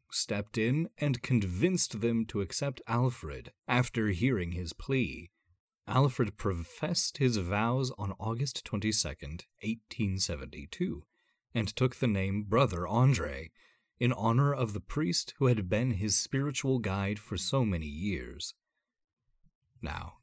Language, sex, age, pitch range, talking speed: English, male, 30-49, 95-130 Hz, 125 wpm